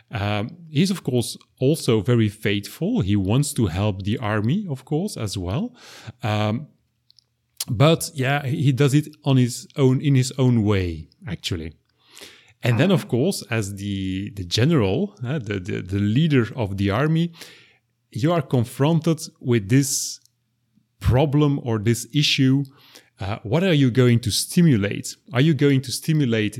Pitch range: 110-150 Hz